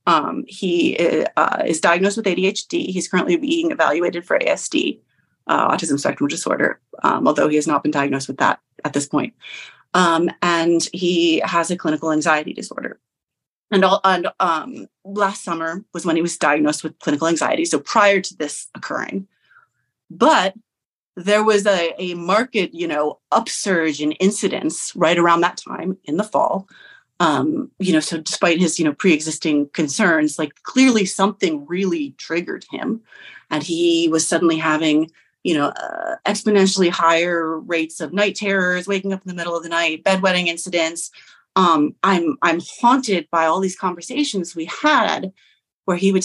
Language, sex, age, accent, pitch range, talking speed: English, female, 30-49, American, 165-200 Hz, 165 wpm